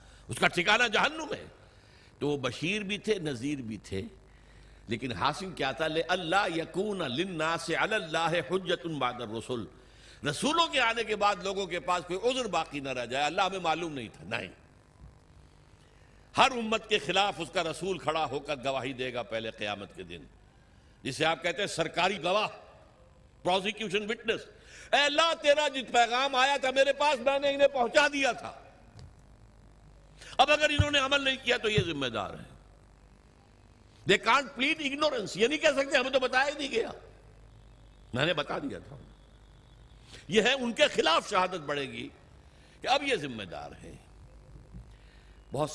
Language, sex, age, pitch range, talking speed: Urdu, male, 60-79, 130-215 Hz, 165 wpm